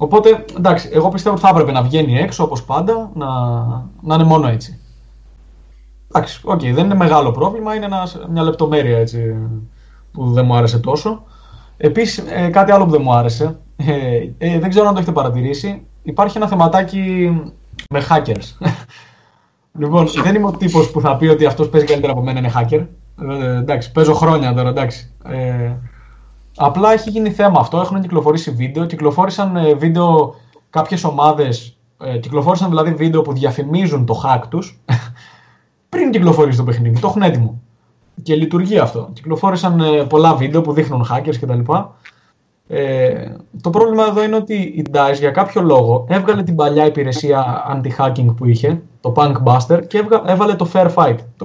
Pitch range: 125-180 Hz